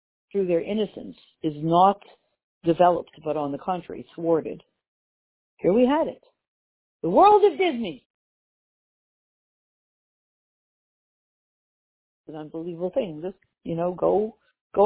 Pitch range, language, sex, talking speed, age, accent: 195-275 Hz, English, female, 110 wpm, 50-69, American